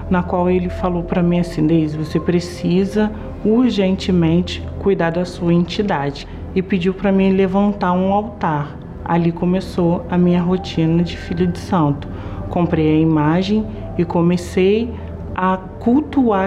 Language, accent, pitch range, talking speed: Portuguese, Brazilian, 160-190 Hz, 140 wpm